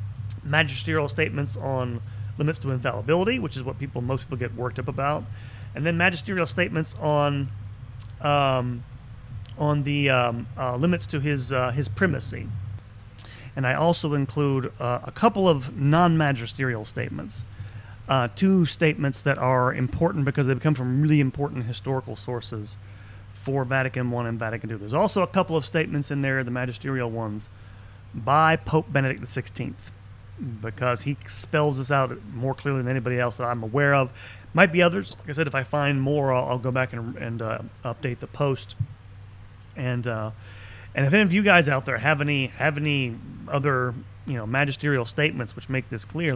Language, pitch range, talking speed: English, 110-145 Hz, 175 wpm